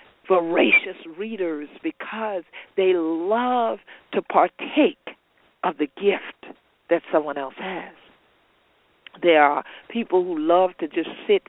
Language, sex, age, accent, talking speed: English, female, 50-69, American, 115 wpm